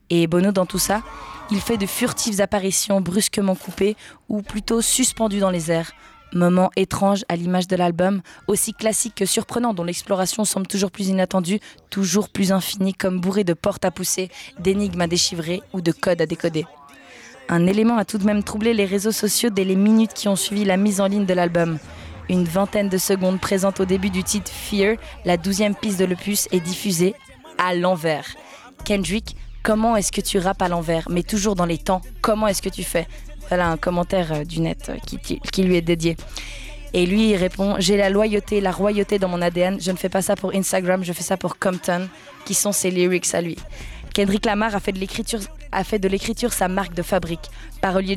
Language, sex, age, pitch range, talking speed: English, female, 20-39, 175-205 Hz, 215 wpm